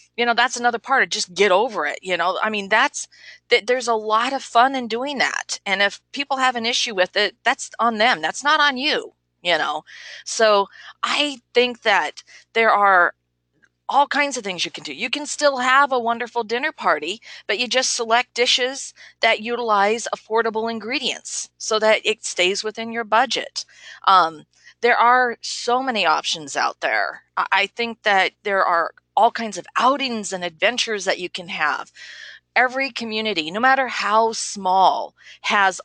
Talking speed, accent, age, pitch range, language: 180 wpm, American, 40-59, 185-240 Hz, English